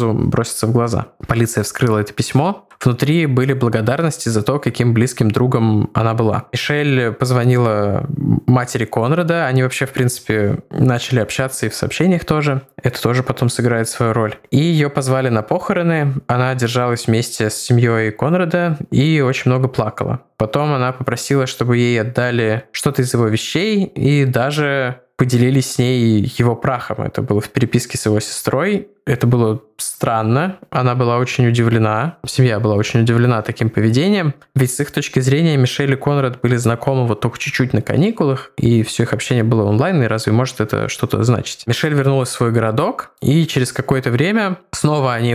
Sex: male